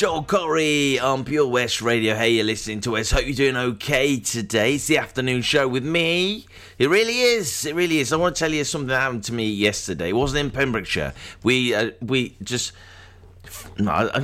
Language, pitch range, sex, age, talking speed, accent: English, 105-155 Hz, male, 30-49, 200 wpm, British